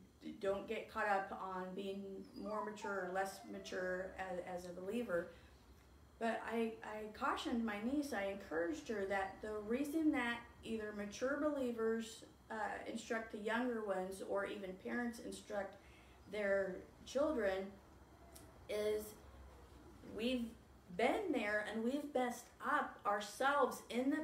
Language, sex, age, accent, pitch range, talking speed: English, female, 30-49, American, 200-255 Hz, 130 wpm